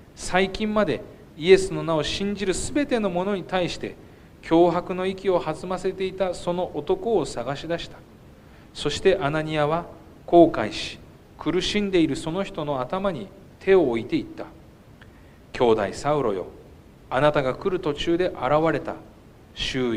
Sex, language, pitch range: male, Japanese, 140-195 Hz